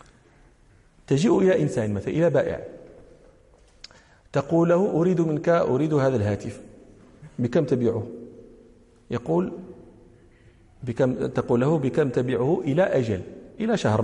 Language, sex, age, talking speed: Danish, male, 50-69, 105 wpm